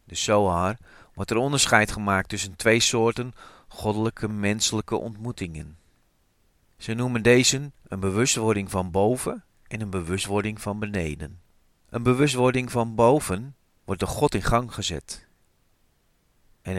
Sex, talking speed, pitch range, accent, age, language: male, 125 wpm, 95-115 Hz, Dutch, 40-59, Dutch